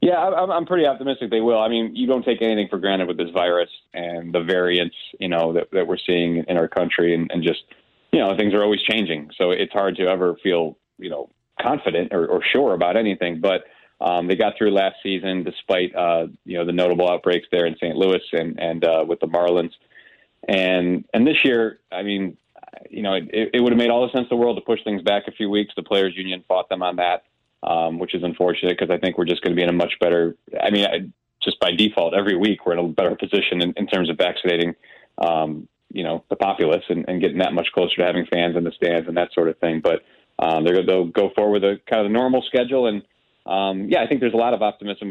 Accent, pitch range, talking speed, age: American, 85-105 Hz, 250 wpm, 30-49